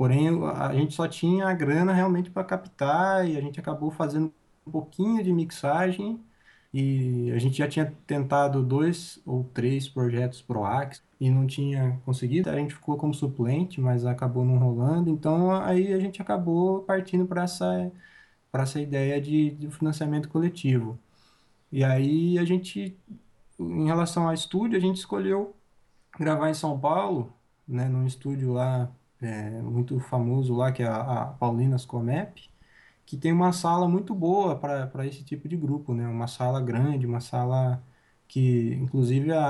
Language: Portuguese